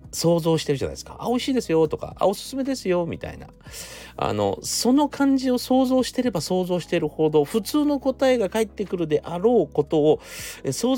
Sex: male